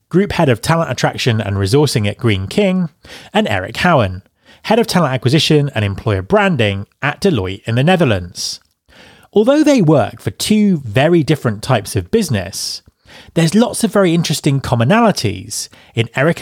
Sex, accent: male, British